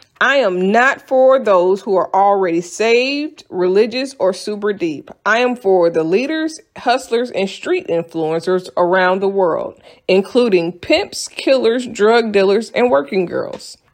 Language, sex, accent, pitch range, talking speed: English, female, American, 180-260 Hz, 140 wpm